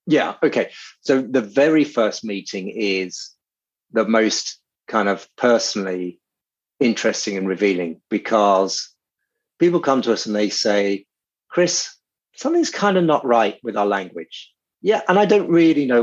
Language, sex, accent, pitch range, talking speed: English, male, British, 110-170 Hz, 145 wpm